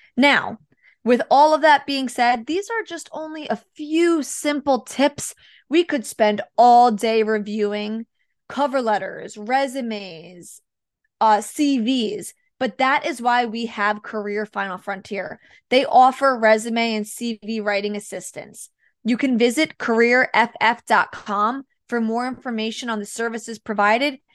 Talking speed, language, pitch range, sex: 130 wpm, English, 215-255 Hz, female